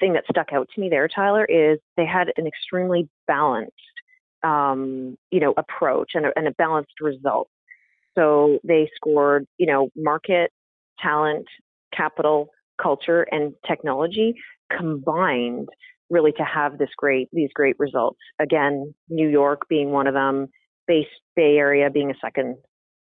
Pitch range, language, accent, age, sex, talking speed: 140-185 Hz, English, American, 30-49, female, 145 wpm